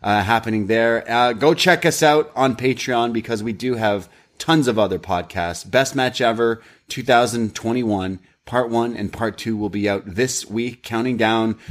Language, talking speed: English, 175 wpm